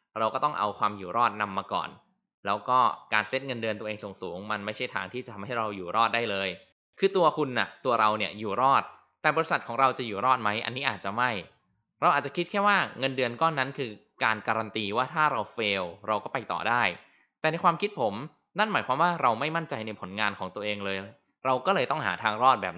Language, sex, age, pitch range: Thai, male, 20-39, 105-135 Hz